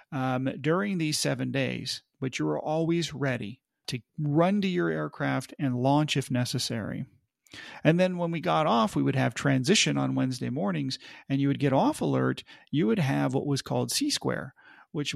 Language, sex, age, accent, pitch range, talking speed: English, male, 40-59, American, 125-165 Hz, 180 wpm